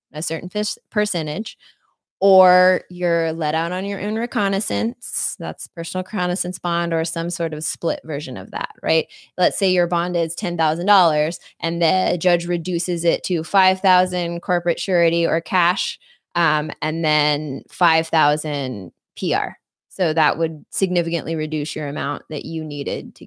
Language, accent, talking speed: English, American, 145 wpm